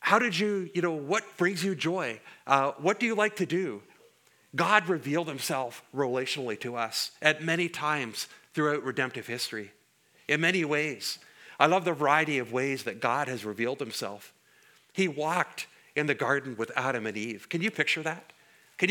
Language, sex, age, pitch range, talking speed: English, male, 50-69, 130-180 Hz, 180 wpm